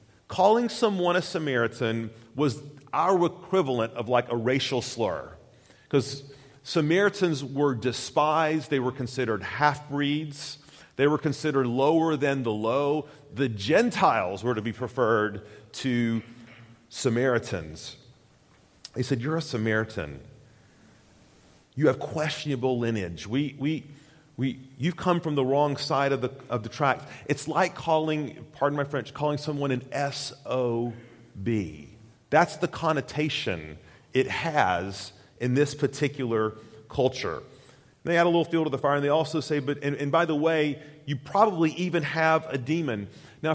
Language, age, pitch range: English, 40-59, 115-155 Hz